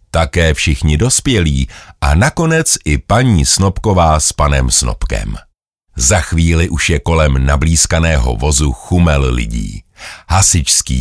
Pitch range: 75-100 Hz